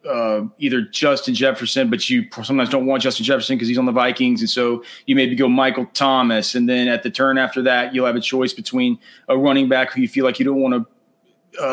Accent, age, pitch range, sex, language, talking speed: American, 30-49, 125-150 Hz, male, English, 230 wpm